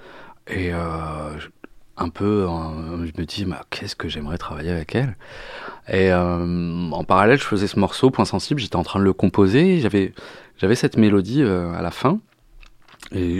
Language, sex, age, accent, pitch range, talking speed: French, male, 30-49, French, 85-110 Hz, 180 wpm